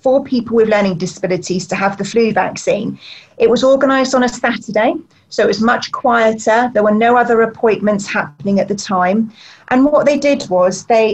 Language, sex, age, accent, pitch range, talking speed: English, female, 30-49, British, 195-230 Hz, 195 wpm